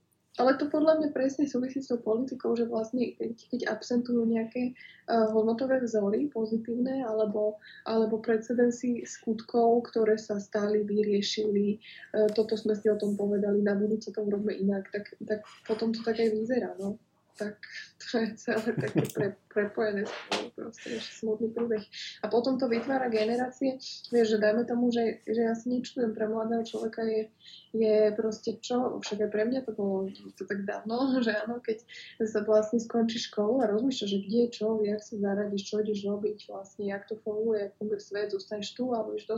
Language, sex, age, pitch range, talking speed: Slovak, female, 20-39, 200-230 Hz, 175 wpm